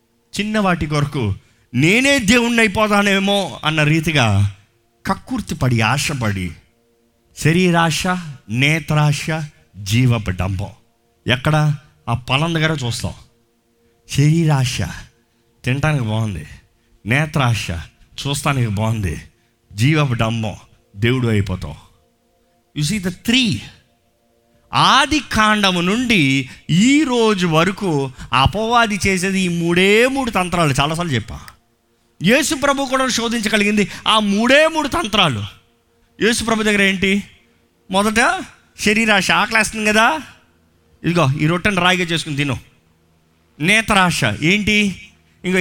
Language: Telugu